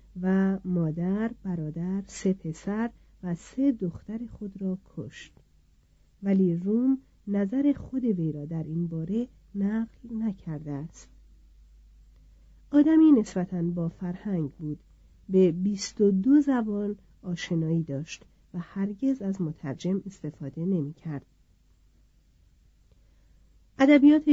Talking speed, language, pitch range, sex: 100 wpm, Persian, 160-210 Hz, female